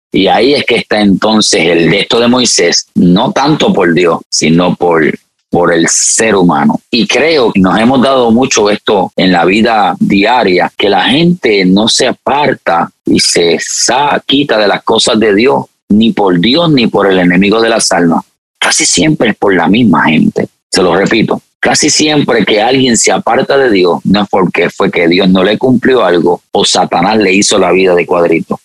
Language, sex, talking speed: English, male, 195 wpm